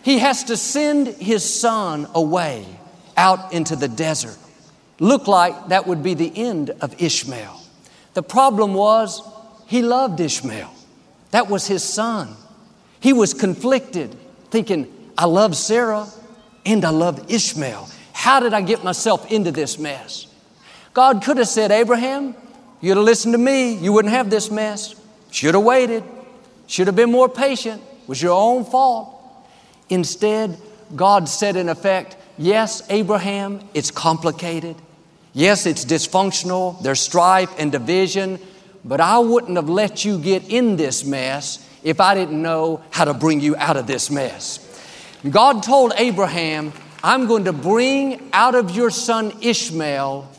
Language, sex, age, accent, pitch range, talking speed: English, male, 50-69, American, 170-230 Hz, 150 wpm